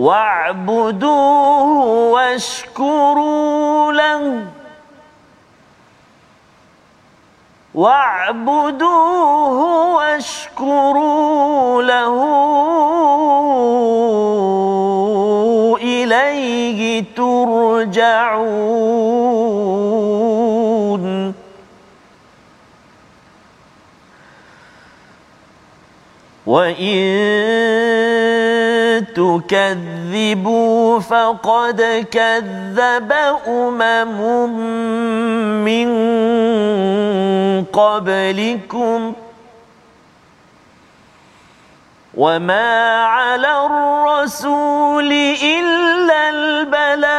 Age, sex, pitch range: 40-59, male, 220-285 Hz